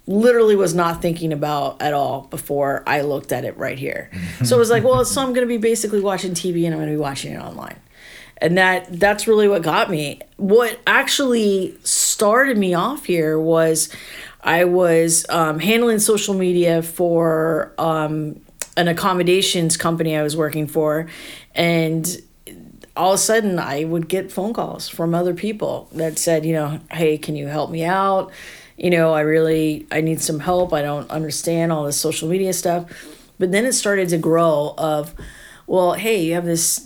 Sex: female